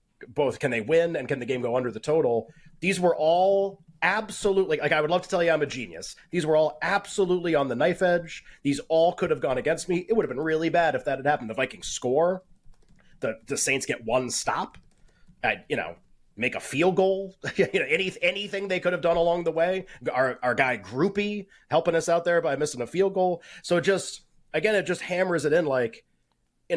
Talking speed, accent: 225 wpm, American